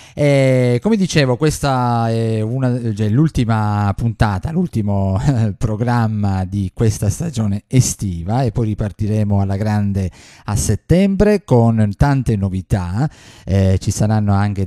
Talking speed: 105 wpm